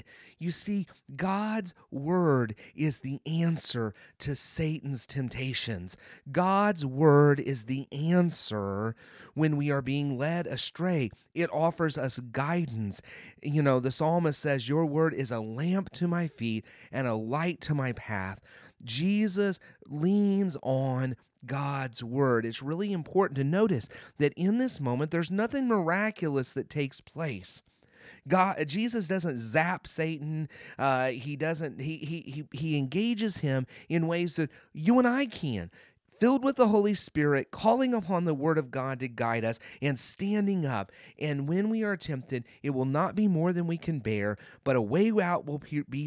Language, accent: English, American